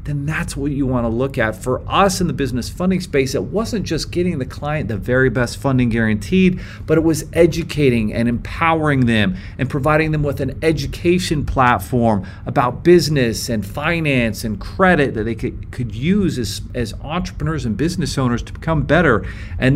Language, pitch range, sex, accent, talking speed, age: English, 115-160 Hz, male, American, 180 wpm, 40-59